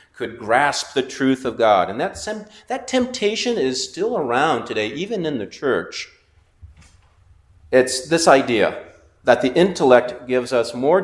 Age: 40-59